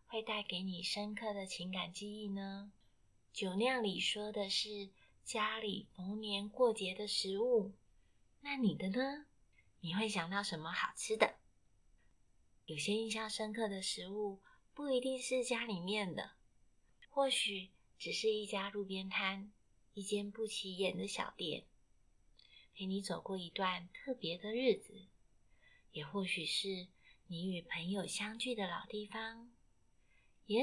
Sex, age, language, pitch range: female, 30-49, Chinese, 190-225 Hz